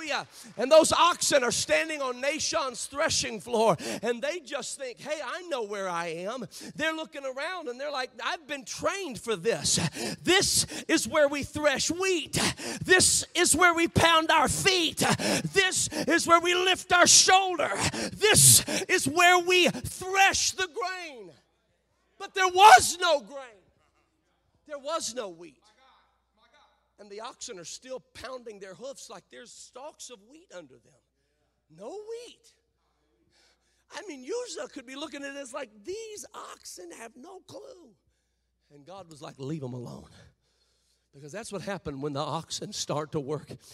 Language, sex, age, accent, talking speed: English, male, 40-59, American, 160 wpm